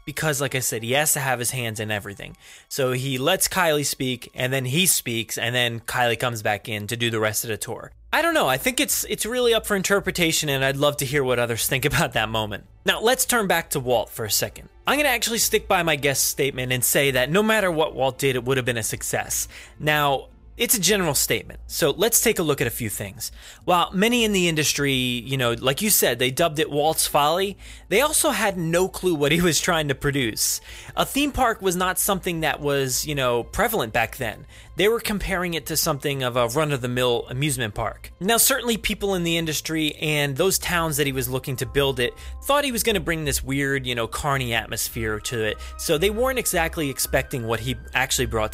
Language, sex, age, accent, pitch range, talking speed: English, male, 20-39, American, 125-190 Hz, 235 wpm